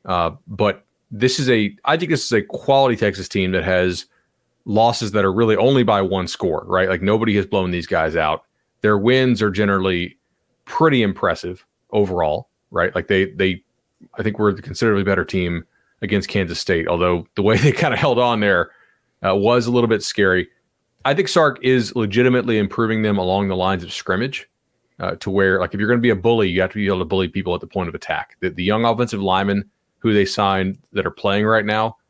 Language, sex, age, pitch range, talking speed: English, male, 30-49, 95-120 Hz, 210 wpm